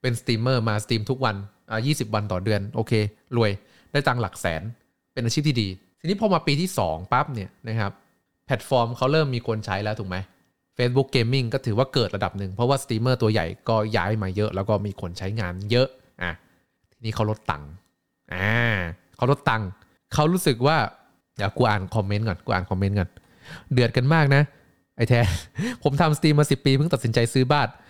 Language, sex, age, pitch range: Thai, male, 20-39, 100-135 Hz